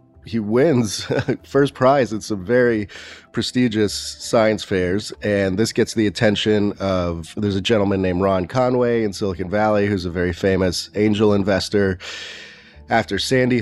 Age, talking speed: 30-49, 145 wpm